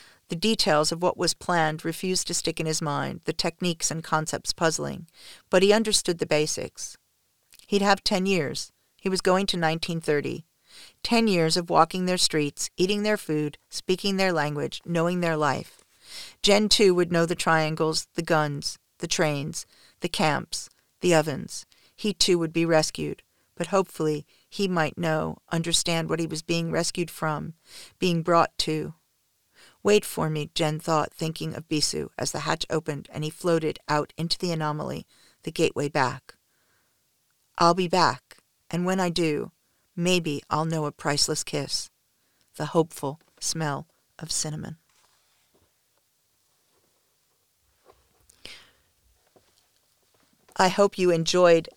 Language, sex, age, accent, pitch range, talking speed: English, female, 40-59, American, 155-180 Hz, 145 wpm